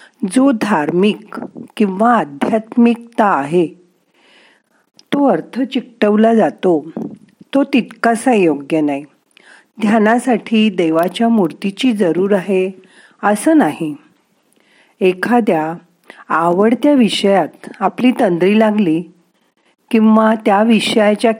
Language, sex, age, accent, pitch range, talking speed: Marathi, female, 50-69, native, 175-235 Hz, 80 wpm